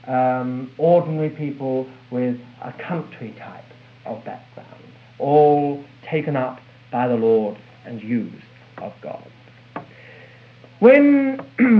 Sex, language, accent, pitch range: male, English, British, 145-205 Hz